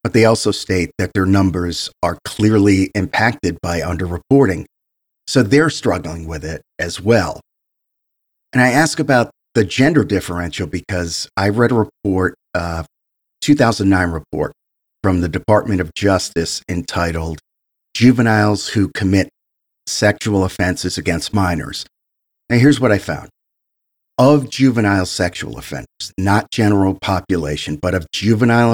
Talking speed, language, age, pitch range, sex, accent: 130 wpm, English, 50-69, 90-110 Hz, male, American